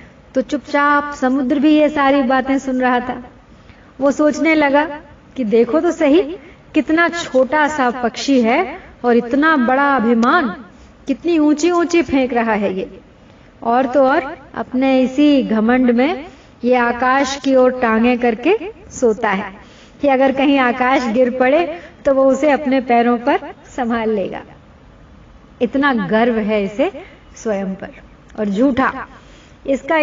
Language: Hindi